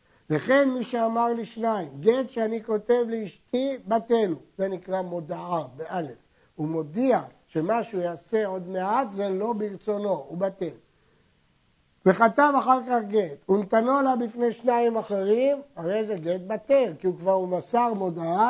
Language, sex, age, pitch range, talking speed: Hebrew, male, 50-69, 175-235 Hz, 145 wpm